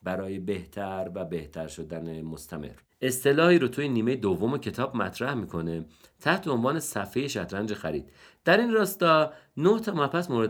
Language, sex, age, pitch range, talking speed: Persian, male, 50-69, 90-140 Hz, 150 wpm